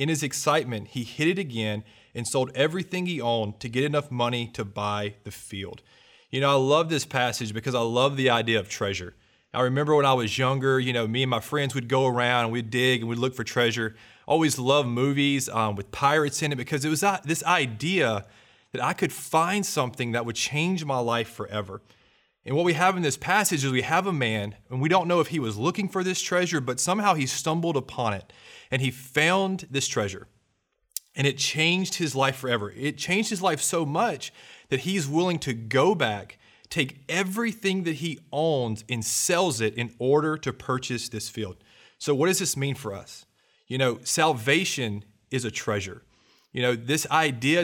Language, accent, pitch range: English, American, 115-160 Hz